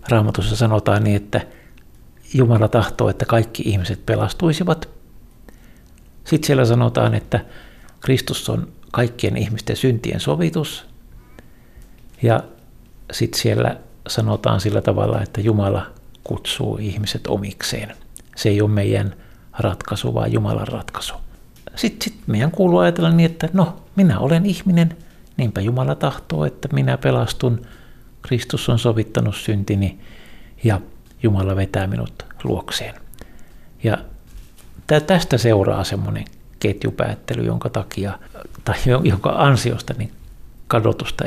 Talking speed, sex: 110 wpm, male